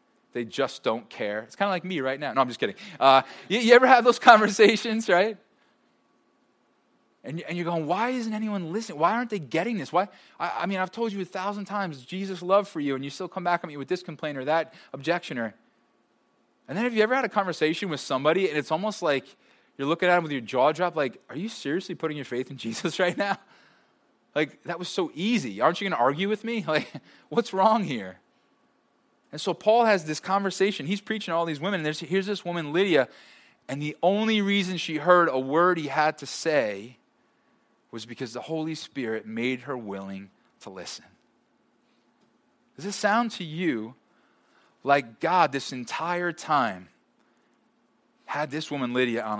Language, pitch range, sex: English, 135-195 Hz, male